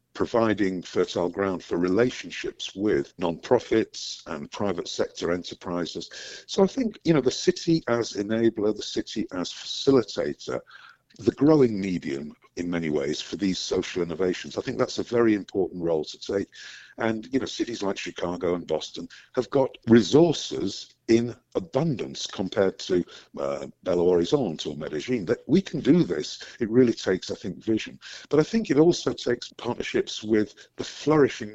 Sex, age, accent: male, 50-69, British